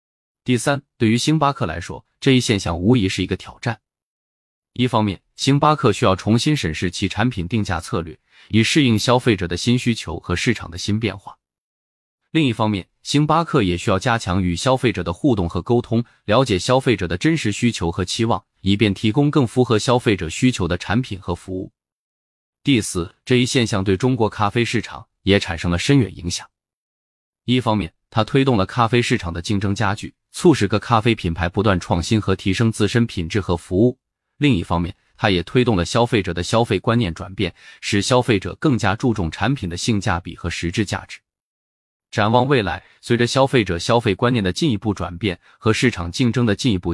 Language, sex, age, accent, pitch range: Chinese, male, 20-39, native, 90-120 Hz